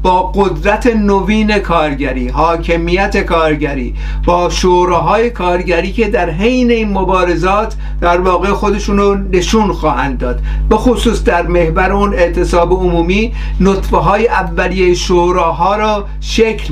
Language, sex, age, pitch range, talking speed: Persian, male, 50-69, 165-205 Hz, 120 wpm